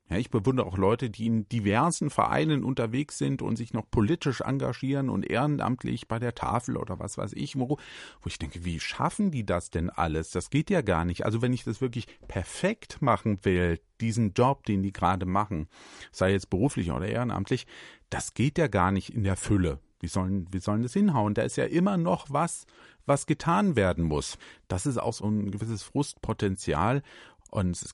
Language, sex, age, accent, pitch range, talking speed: German, male, 40-59, German, 100-135 Hz, 195 wpm